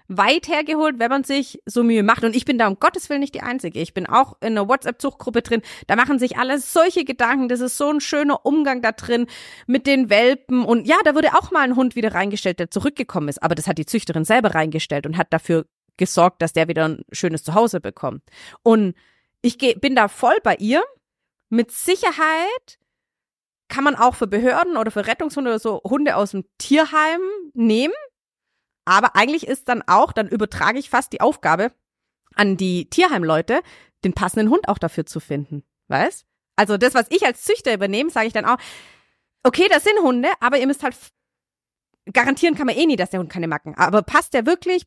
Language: German